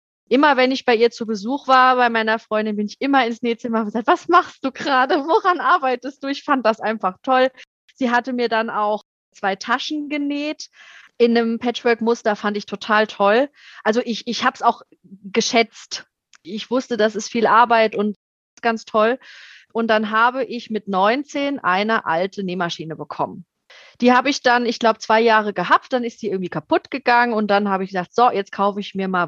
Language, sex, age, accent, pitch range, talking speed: German, female, 30-49, German, 205-255 Hz, 200 wpm